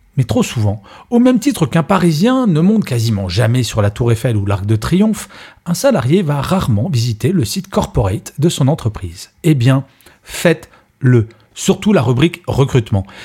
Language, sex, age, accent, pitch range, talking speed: French, male, 40-59, French, 110-165 Hz, 170 wpm